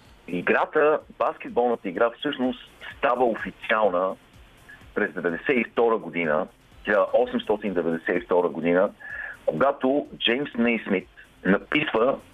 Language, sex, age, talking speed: Bulgarian, male, 50-69, 75 wpm